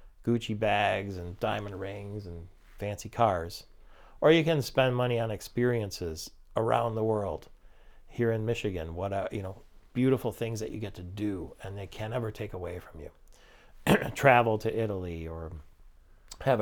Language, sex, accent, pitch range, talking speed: English, male, American, 100-120 Hz, 165 wpm